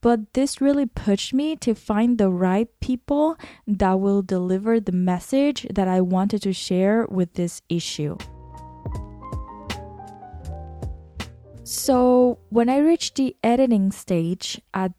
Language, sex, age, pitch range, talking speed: English, female, 10-29, 185-230 Hz, 125 wpm